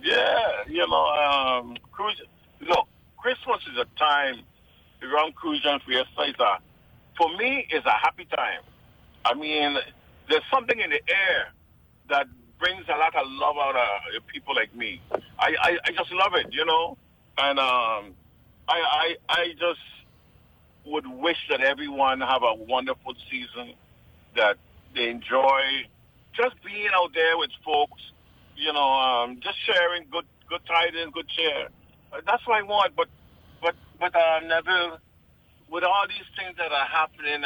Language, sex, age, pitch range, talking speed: English, male, 50-69, 135-205 Hz, 155 wpm